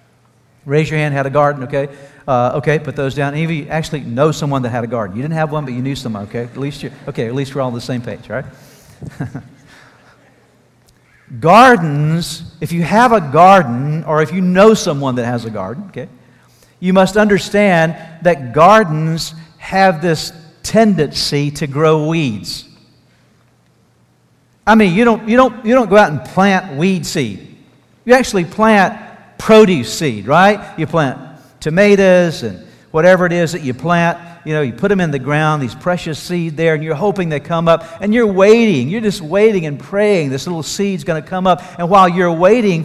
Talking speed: 190 wpm